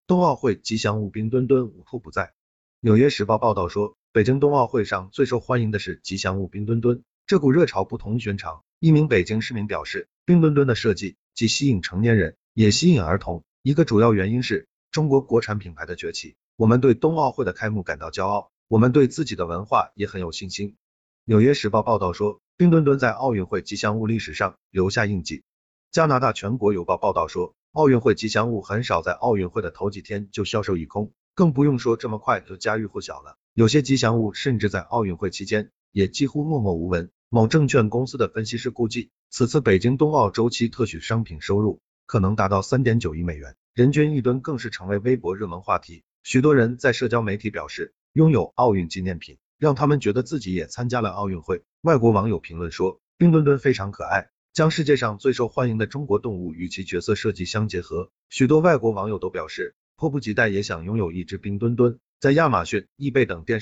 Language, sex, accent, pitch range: Chinese, male, native, 100-130 Hz